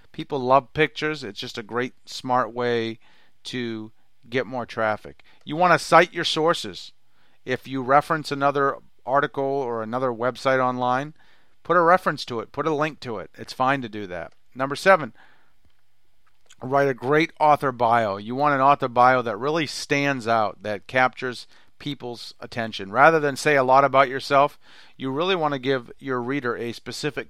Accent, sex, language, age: American, male, English, 40-59